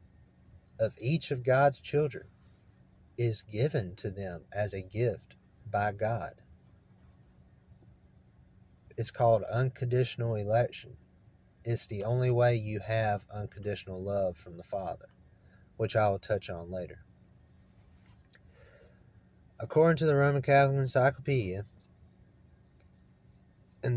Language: English